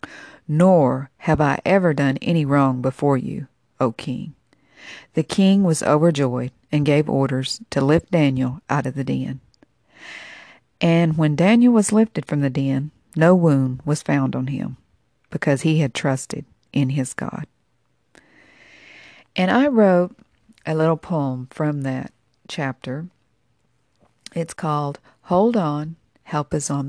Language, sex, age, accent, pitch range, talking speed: English, female, 50-69, American, 135-170 Hz, 140 wpm